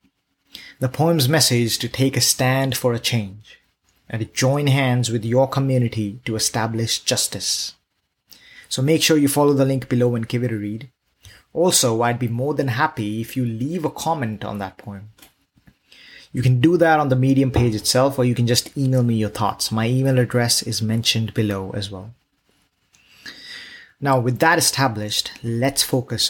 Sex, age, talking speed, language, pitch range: male, 20-39, 180 wpm, English, 115-135 Hz